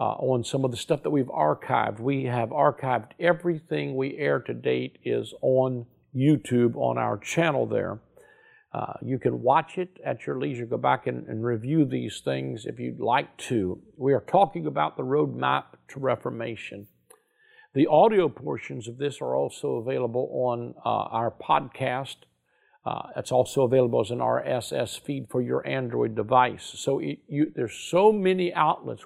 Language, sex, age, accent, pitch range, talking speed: English, male, 50-69, American, 120-155 Hz, 165 wpm